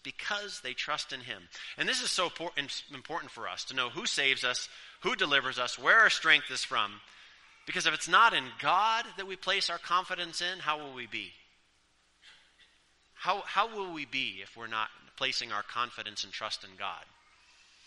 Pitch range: 145-200 Hz